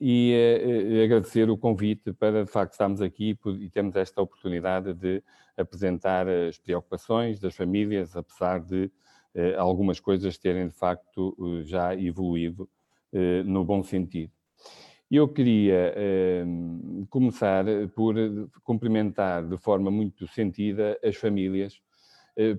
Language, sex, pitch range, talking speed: Portuguese, male, 90-105 Hz, 125 wpm